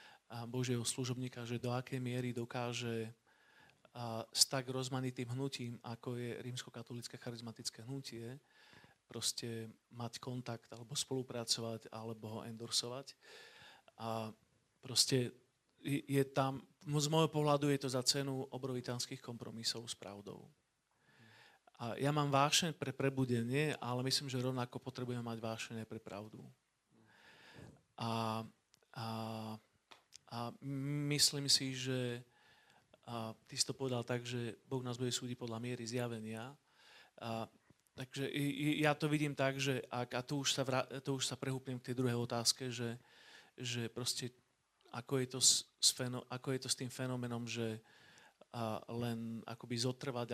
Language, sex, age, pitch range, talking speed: Slovak, male, 40-59, 115-130 Hz, 140 wpm